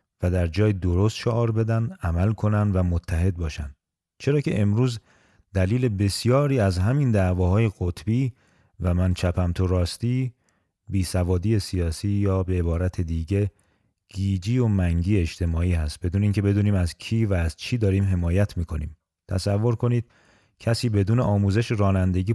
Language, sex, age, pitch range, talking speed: Persian, male, 40-59, 90-110 Hz, 140 wpm